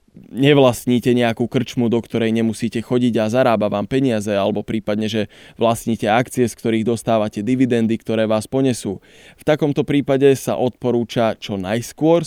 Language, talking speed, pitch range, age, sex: Slovak, 145 wpm, 110-130 Hz, 20-39, male